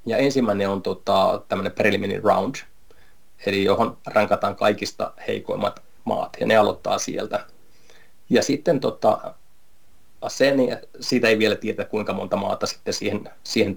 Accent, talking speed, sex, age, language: native, 135 wpm, male, 30-49, Finnish